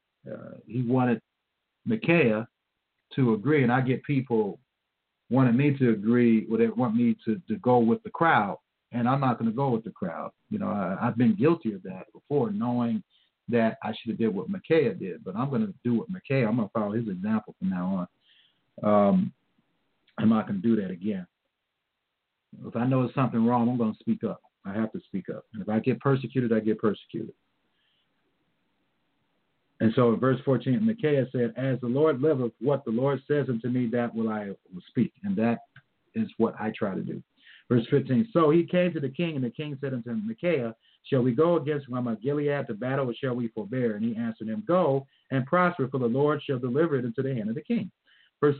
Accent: American